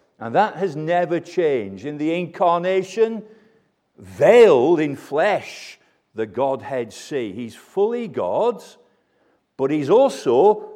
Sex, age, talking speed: male, 50-69, 110 wpm